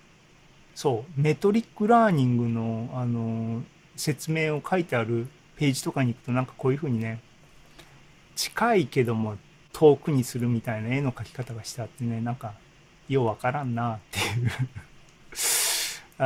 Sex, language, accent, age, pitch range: male, Japanese, native, 40-59, 120-160 Hz